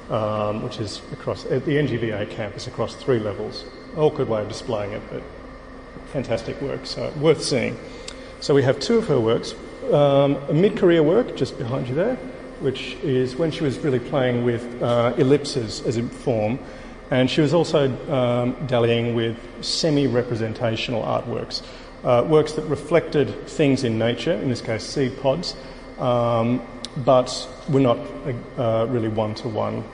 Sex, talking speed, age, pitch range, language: male, 155 wpm, 40-59, 115-135 Hz, English